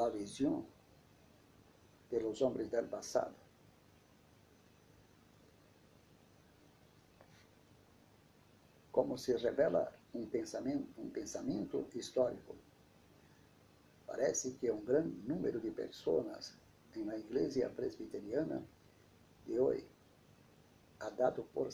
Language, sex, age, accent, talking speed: Spanish, male, 60-79, Brazilian, 85 wpm